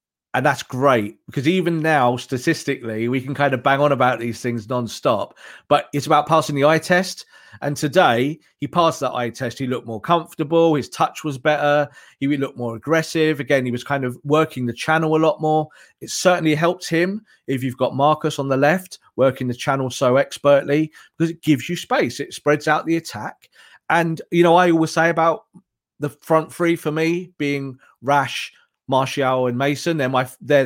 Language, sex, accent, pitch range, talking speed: English, male, British, 130-165 Hz, 200 wpm